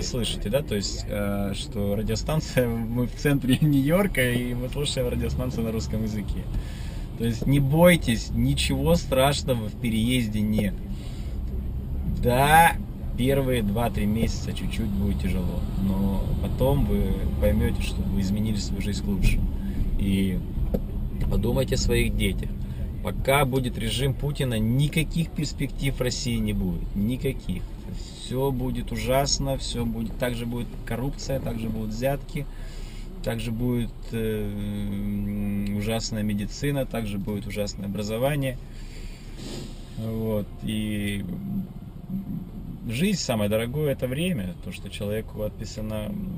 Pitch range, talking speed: 100-130 Hz, 115 wpm